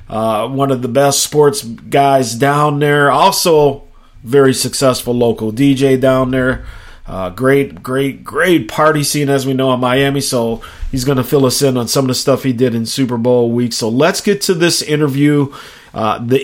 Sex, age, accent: male, 40-59, American